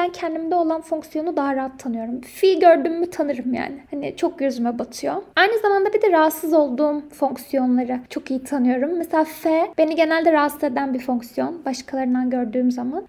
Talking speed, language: 165 wpm, Turkish